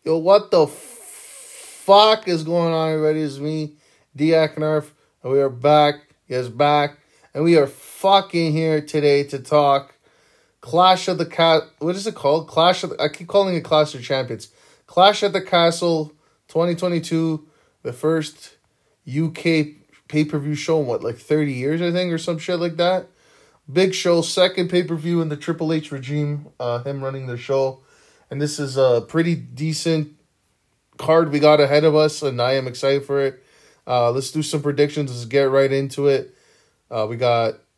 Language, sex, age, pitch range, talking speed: English, male, 20-39, 130-160 Hz, 180 wpm